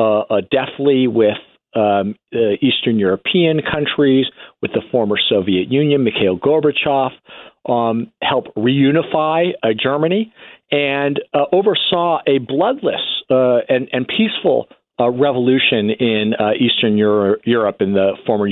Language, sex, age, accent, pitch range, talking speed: English, male, 40-59, American, 115-155 Hz, 125 wpm